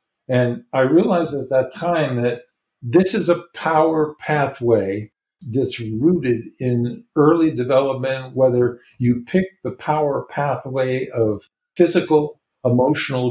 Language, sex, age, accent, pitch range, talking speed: English, male, 50-69, American, 115-150 Hz, 115 wpm